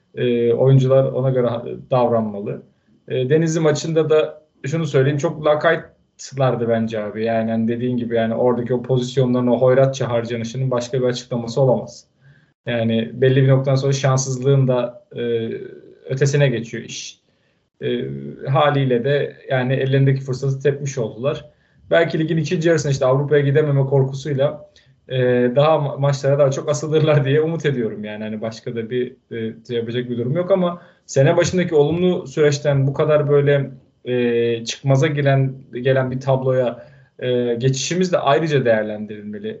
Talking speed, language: 150 wpm, Turkish